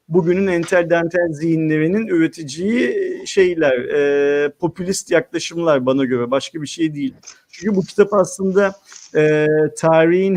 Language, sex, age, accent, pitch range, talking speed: Turkish, male, 50-69, native, 155-200 Hz, 115 wpm